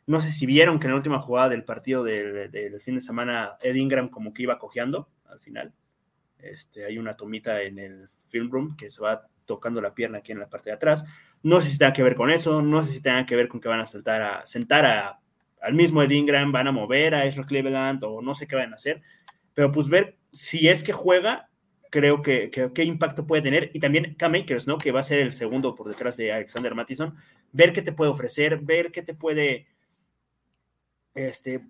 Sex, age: male, 20-39